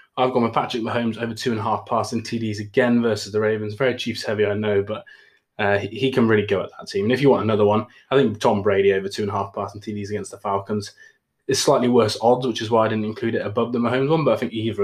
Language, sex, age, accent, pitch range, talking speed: English, male, 20-39, British, 105-125 Hz, 255 wpm